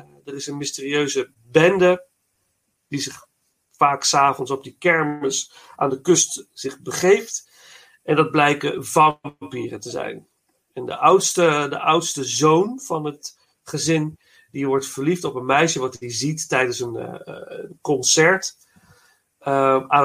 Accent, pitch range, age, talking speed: Dutch, 135-175 Hz, 40-59, 140 wpm